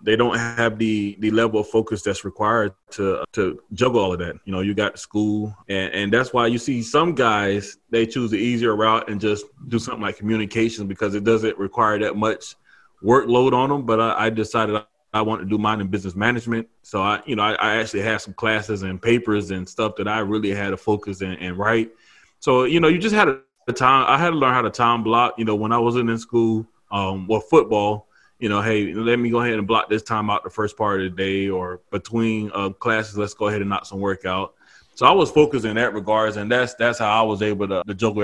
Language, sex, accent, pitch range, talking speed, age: English, male, American, 105-130 Hz, 245 wpm, 20-39